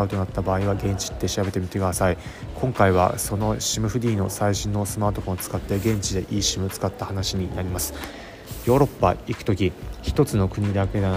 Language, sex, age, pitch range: Japanese, male, 20-39, 95-110 Hz